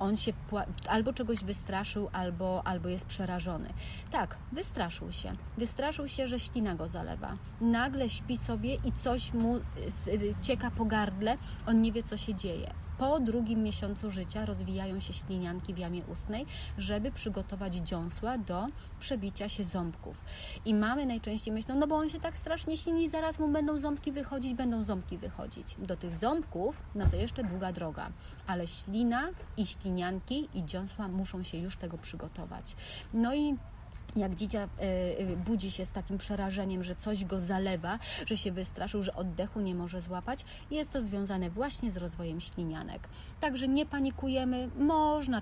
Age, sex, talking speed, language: 30-49, female, 160 wpm, Polish